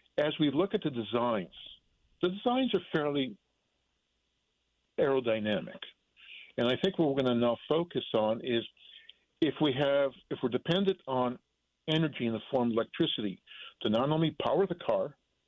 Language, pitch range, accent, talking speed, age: English, 120-160 Hz, American, 160 wpm, 50-69